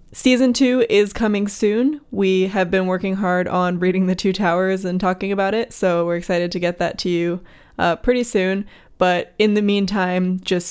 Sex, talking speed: female, 195 wpm